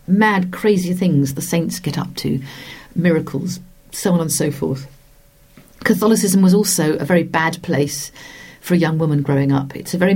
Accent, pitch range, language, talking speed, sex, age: British, 155-195 Hz, English, 175 wpm, female, 50-69